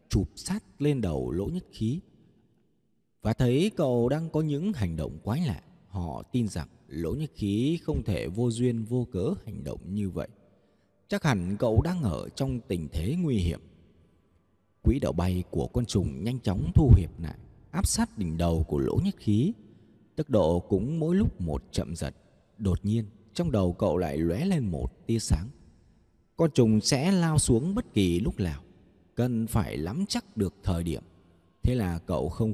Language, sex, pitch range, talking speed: Vietnamese, male, 90-130 Hz, 185 wpm